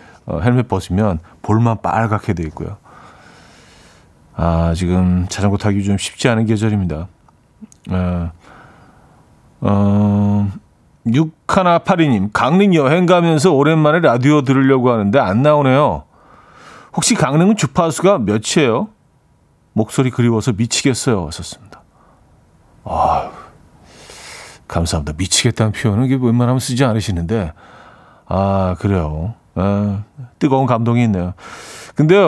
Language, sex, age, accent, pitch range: Korean, male, 40-59, native, 95-140 Hz